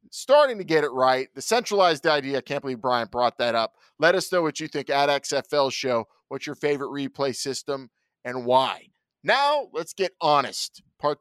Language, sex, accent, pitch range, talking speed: English, male, American, 120-155 Hz, 195 wpm